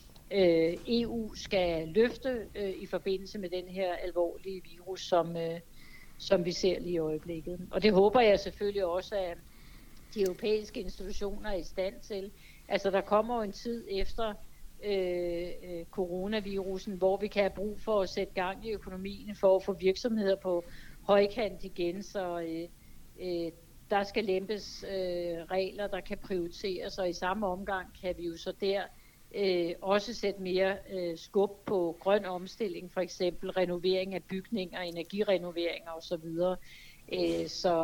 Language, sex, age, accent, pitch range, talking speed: Danish, female, 60-79, native, 175-200 Hz, 145 wpm